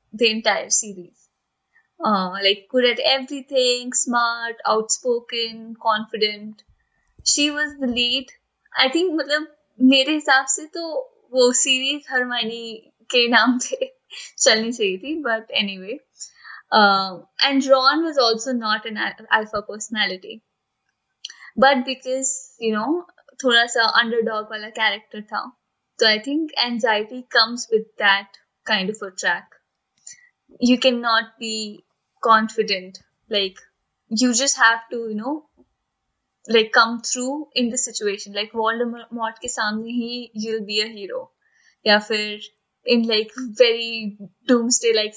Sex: female